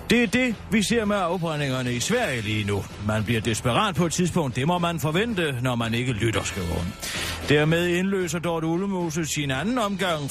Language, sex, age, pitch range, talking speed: Danish, male, 40-59, 115-175 Hz, 190 wpm